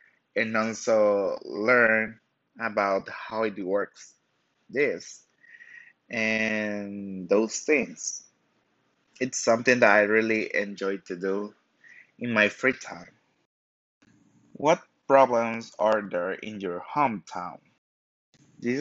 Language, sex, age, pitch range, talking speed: English, male, 20-39, 100-125 Hz, 100 wpm